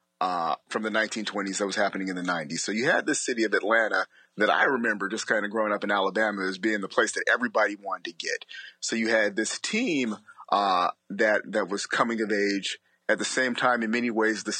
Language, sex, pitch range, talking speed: English, male, 100-115 Hz, 230 wpm